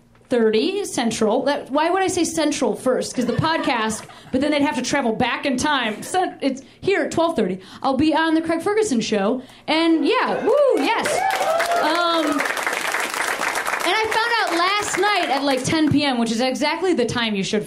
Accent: American